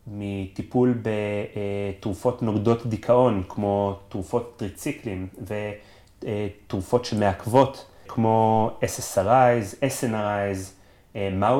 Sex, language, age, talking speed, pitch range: male, Hebrew, 30-49, 65 wpm, 100-120 Hz